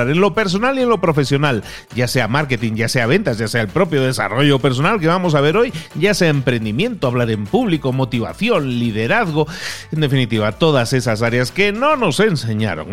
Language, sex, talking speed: Spanish, male, 190 wpm